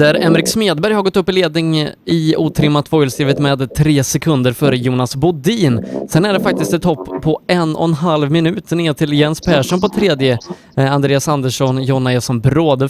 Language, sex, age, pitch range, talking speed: Swedish, male, 20-39, 135-170 Hz, 185 wpm